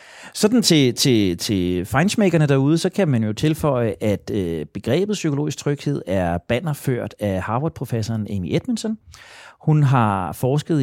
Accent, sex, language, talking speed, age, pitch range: native, male, Danish, 135 wpm, 30-49, 110-150 Hz